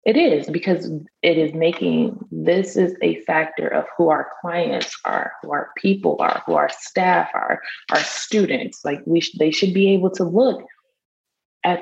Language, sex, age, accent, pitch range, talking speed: English, female, 20-39, American, 150-185 Hz, 180 wpm